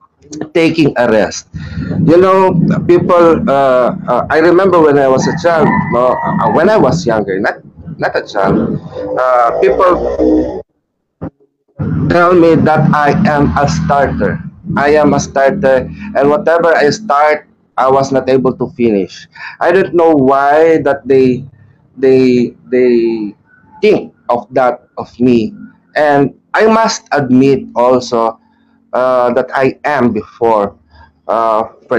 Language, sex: English, male